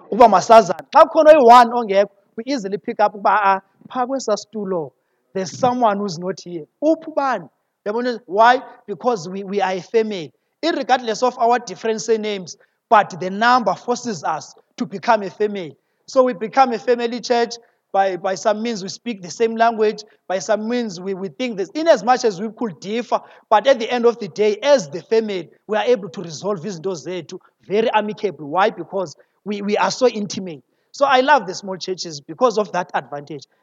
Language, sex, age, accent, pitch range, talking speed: English, male, 30-49, South African, 190-240 Hz, 180 wpm